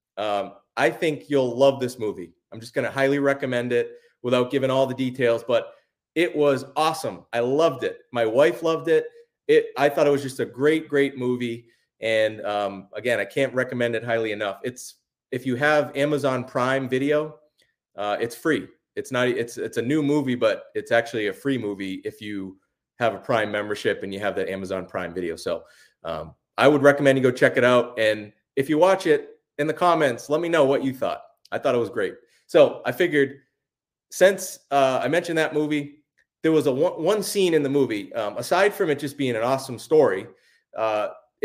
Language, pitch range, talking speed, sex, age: English, 125-155 Hz, 205 wpm, male, 30-49